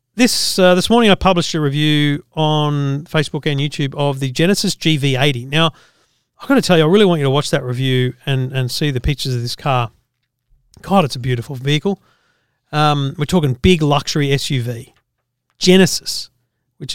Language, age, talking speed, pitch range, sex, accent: English, 40-59, 180 wpm, 140-190 Hz, male, Australian